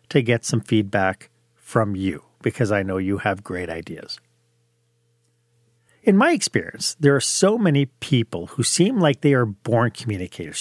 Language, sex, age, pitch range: English, male, 40-59, 115-160 Hz